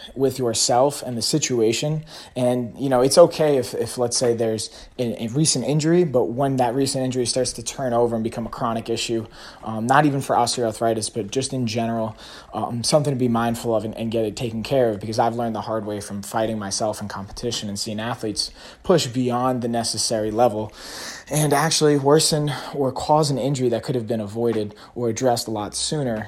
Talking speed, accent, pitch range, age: 210 wpm, American, 110-135 Hz, 20-39